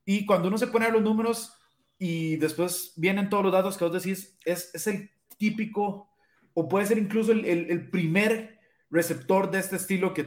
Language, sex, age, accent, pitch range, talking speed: Spanish, male, 30-49, Mexican, 160-195 Hz, 200 wpm